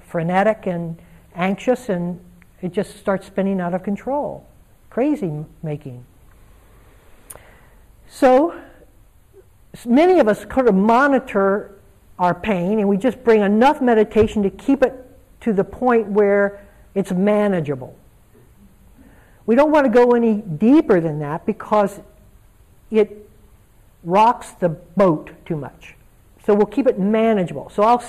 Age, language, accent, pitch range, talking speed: 60-79, English, American, 175-220 Hz, 130 wpm